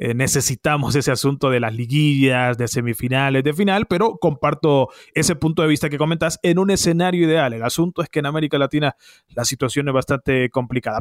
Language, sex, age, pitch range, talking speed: English, male, 30-49, 140-190 Hz, 190 wpm